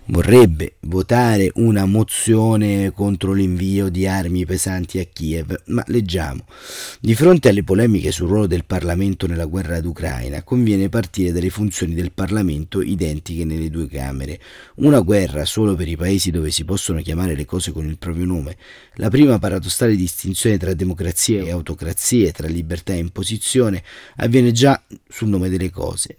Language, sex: Italian, male